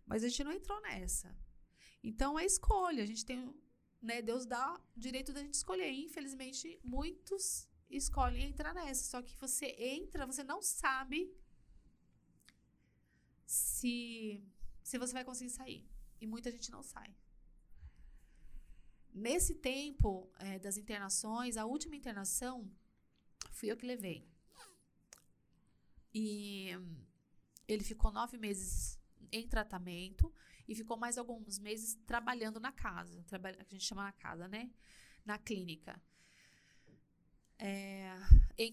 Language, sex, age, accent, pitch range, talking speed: Portuguese, female, 20-39, Brazilian, 205-260 Hz, 125 wpm